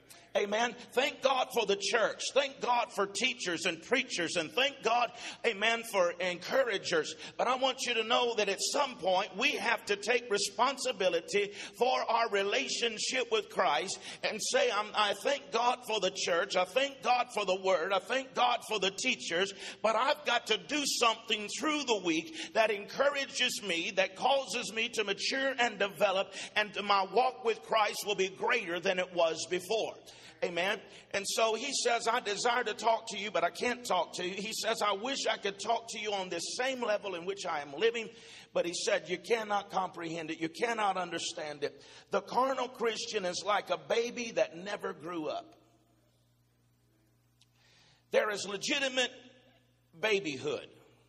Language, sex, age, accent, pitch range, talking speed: English, male, 50-69, American, 190-245 Hz, 175 wpm